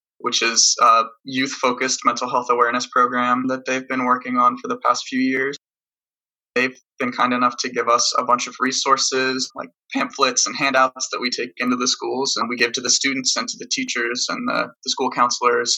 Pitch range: 125-155 Hz